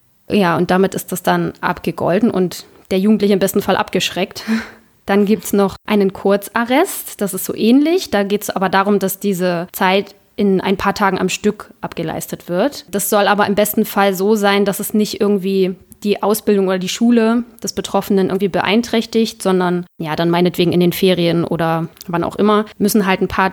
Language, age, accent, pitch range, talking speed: German, 20-39, German, 180-215 Hz, 195 wpm